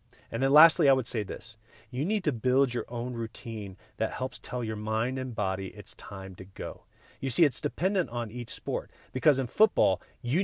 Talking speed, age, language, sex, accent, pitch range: 205 wpm, 40-59, English, male, American, 100-130 Hz